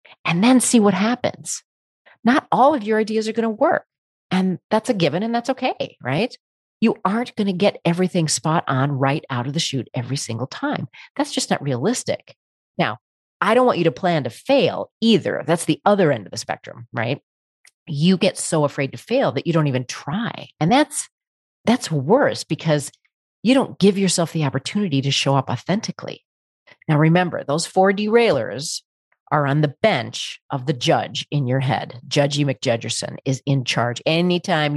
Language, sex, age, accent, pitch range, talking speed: English, female, 40-59, American, 140-215 Hz, 185 wpm